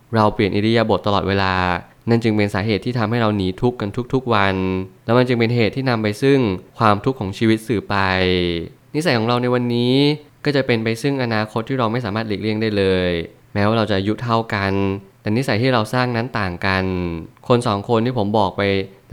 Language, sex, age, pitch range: Thai, male, 20-39, 100-120 Hz